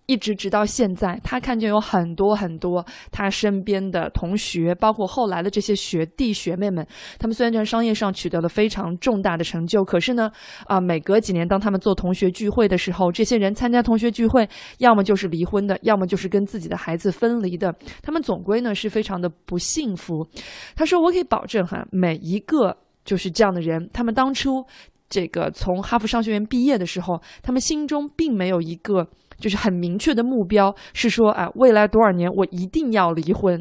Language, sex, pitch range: Chinese, female, 180-235 Hz